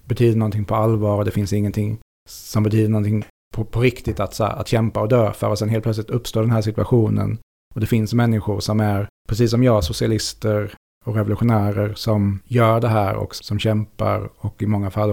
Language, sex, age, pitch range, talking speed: Swedish, male, 30-49, 105-120 Hz, 205 wpm